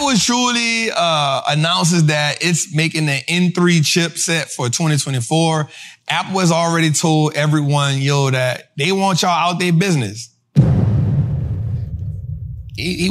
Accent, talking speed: American, 120 wpm